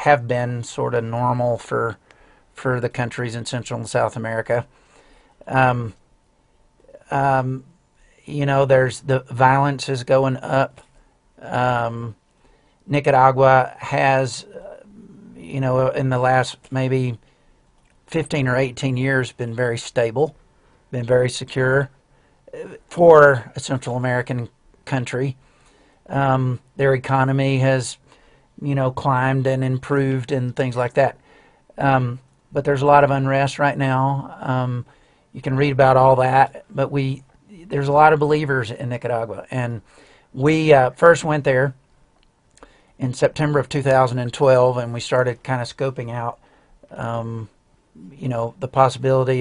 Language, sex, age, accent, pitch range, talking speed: English, male, 50-69, American, 125-140 Hz, 130 wpm